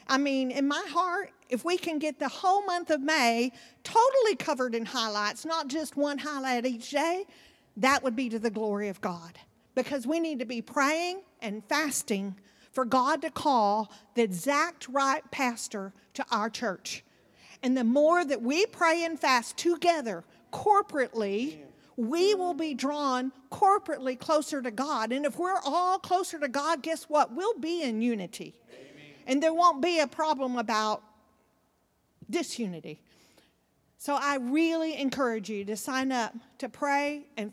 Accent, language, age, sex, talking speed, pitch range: American, English, 50-69, female, 160 wpm, 235-320 Hz